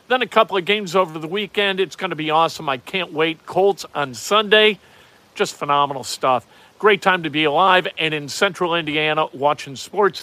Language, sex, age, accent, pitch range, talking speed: English, male, 50-69, American, 170-215 Hz, 195 wpm